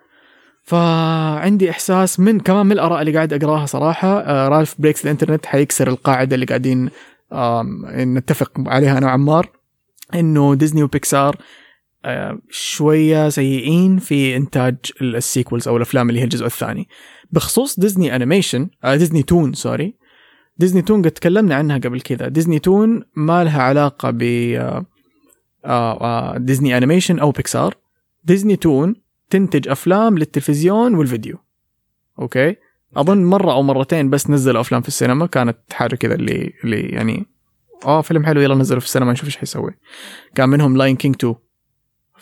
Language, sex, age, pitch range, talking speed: English, male, 20-39, 130-170 Hz, 130 wpm